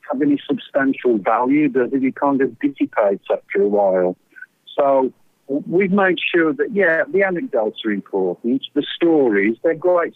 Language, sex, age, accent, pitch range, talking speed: English, male, 60-79, British, 110-180 Hz, 155 wpm